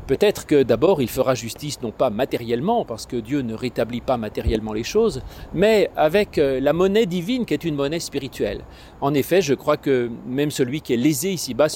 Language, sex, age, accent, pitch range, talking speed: French, male, 40-59, French, 130-170 Hz, 200 wpm